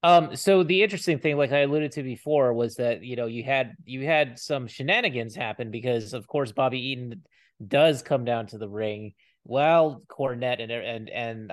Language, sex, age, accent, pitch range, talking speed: English, male, 30-49, American, 110-140 Hz, 195 wpm